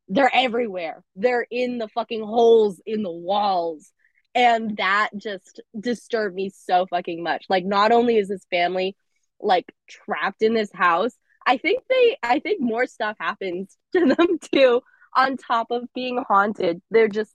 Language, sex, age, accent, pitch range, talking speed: English, female, 20-39, American, 185-240 Hz, 165 wpm